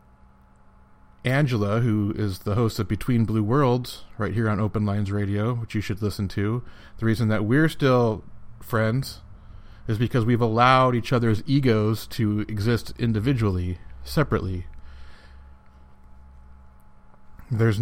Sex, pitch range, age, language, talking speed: male, 95-125 Hz, 30-49, English, 130 wpm